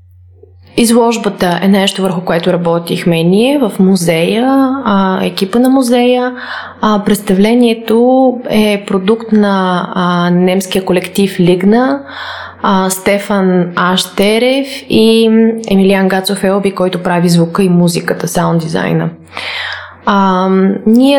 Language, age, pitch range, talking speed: Bulgarian, 20-39, 180-210 Hz, 110 wpm